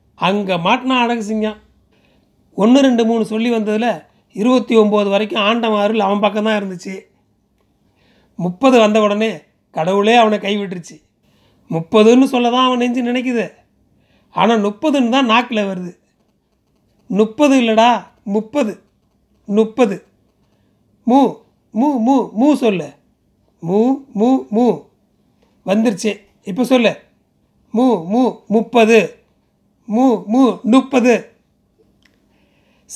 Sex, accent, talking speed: male, native, 90 wpm